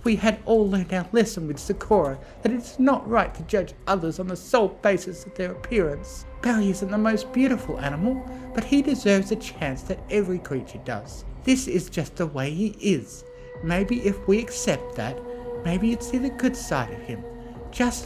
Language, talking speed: English, 195 wpm